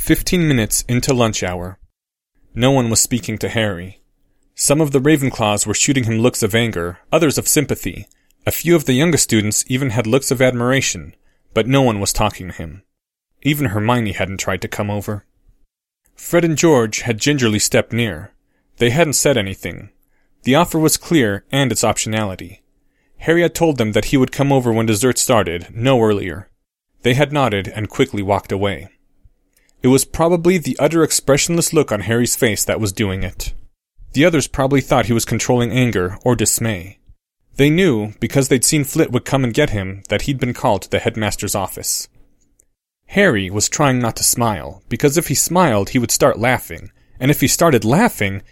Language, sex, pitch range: English, male, 105-140 Hz